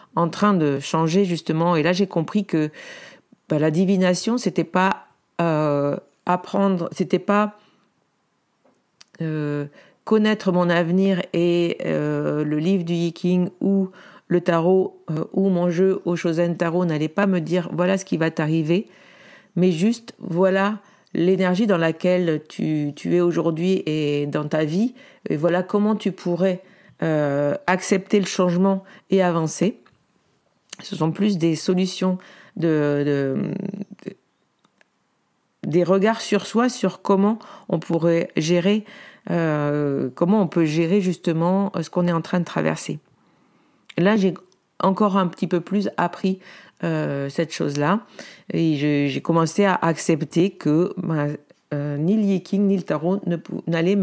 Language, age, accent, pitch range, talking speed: French, 50-69, French, 160-195 Hz, 145 wpm